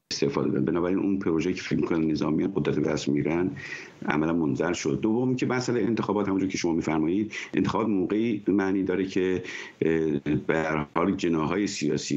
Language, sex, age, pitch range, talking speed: Persian, male, 50-69, 75-105 Hz, 160 wpm